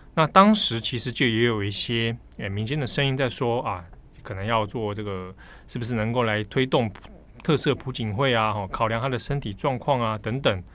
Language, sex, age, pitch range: Chinese, male, 20-39, 105-145 Hz